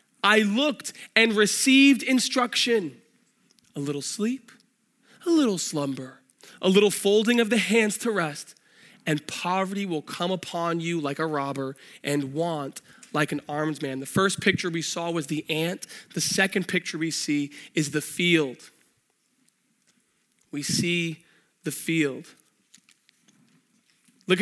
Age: 20-39